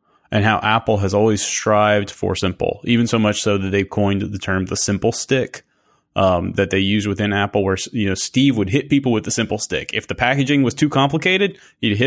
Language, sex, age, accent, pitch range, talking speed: English, male, 30-49, American, 100-130 Hz, 225 wpm